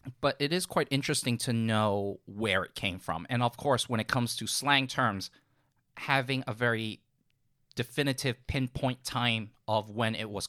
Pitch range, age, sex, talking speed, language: 105-130 Hz, 30-49, male, 170 wpm, English